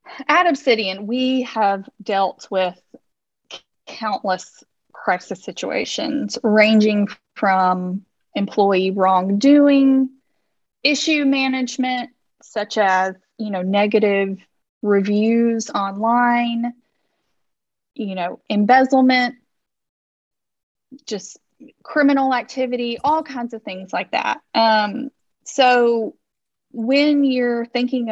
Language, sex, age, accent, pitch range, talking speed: English, female, 30-49, American, 200-250 Hz, 85 wpm